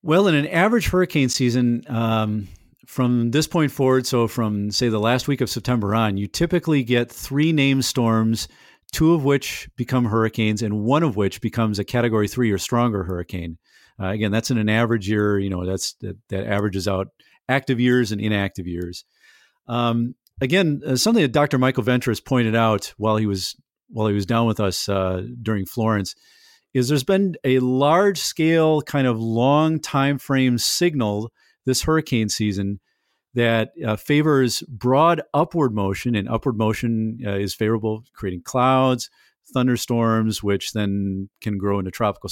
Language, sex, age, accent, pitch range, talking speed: English, male, 40-59, American, 105-135 Hz, 165 wpm